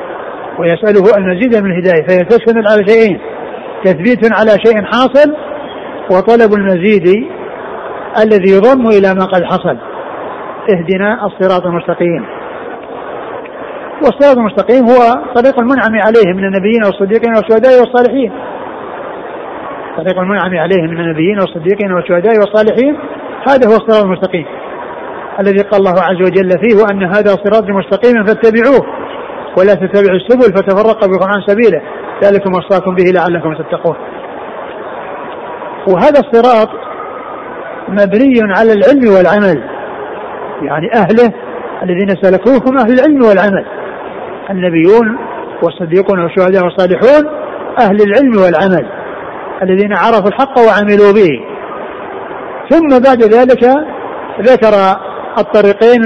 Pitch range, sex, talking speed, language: 190-240 Hz, male, 105 wpm, Arabic